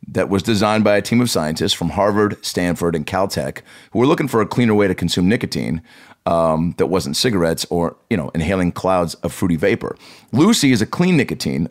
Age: 40-59